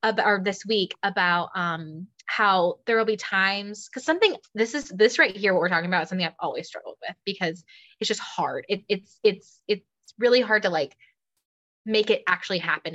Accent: American